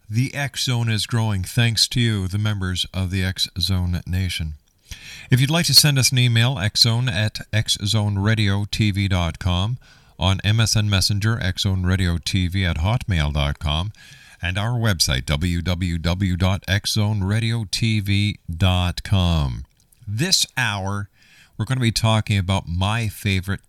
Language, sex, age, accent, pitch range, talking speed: English, male, 50-69, American, 85-115 Hz, 150 wpm